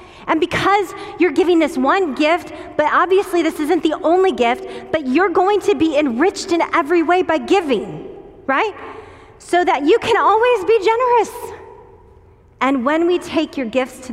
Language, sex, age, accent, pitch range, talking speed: English, female, 30-49, American, 200-310 Hz, 170 wpm